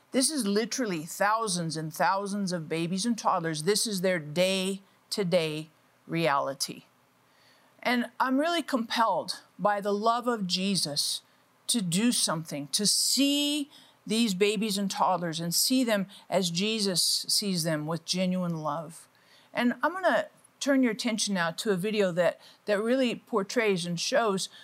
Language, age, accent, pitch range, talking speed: English, 50-69, American, 180-230 Hz, 145 wpm